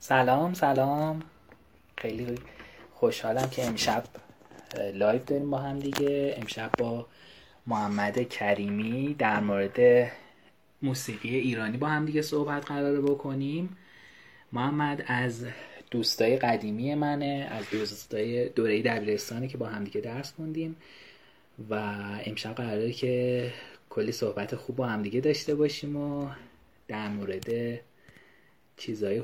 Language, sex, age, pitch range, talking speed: Persian, male, 30-49, 110-145 Hz, 115 wpm